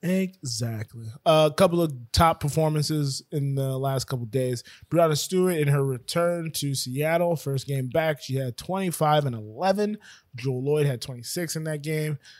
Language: English